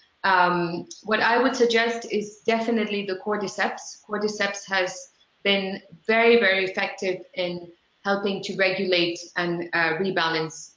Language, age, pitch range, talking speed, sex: English, 30-49, 175-210 Hz, 125 wpm, female